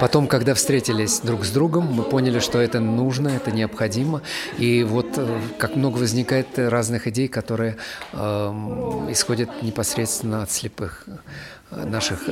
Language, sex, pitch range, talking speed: Russian, male, 115-140 Hz, 130 wpm